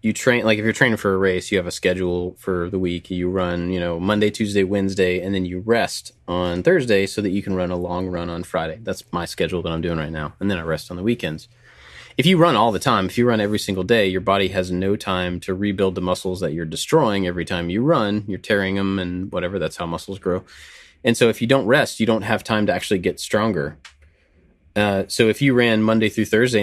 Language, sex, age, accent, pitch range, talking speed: English, male, 20-39, American, 90-110 Hz, 255 wpm